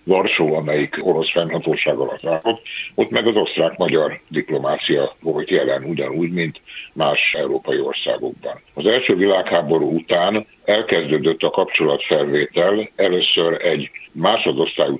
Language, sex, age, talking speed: Hungarian, male, 60-79, 110 wpm